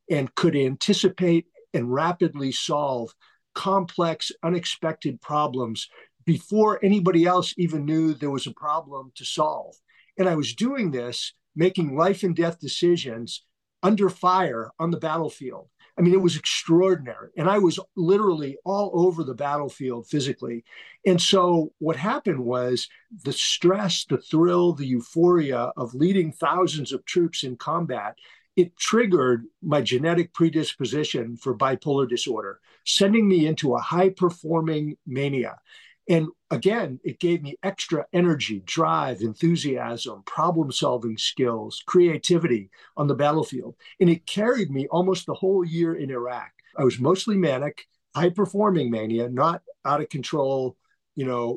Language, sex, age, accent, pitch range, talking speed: English, male, 50-69, American, 135-180 Hz, 135 wpm